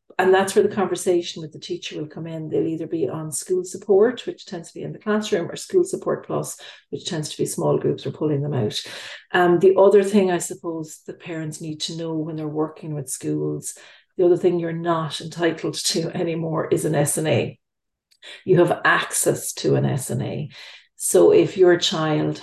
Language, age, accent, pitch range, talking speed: English, 40-59, Irish, 150-185 Hz, 200 wpm